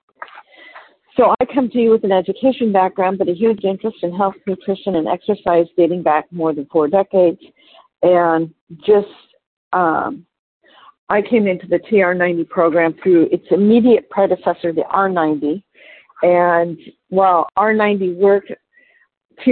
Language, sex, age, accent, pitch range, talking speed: English, female, 50-69, American, 170-220 Hz, 135 wpm